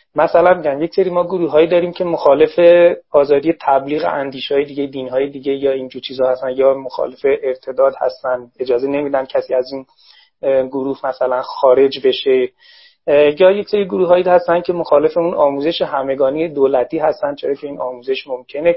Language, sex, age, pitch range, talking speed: Persian, male, 30-49, 135-195 Hz, 155 wpm